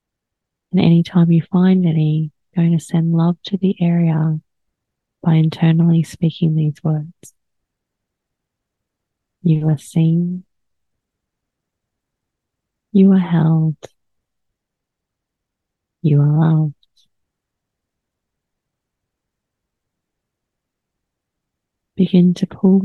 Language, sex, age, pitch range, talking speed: English, female, 30-49, 155-180 Hz, 80 wpm